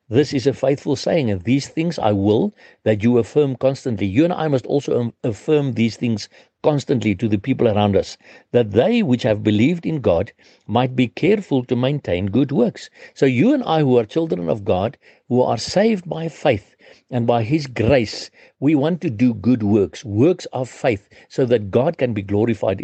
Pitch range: 110-140 Hz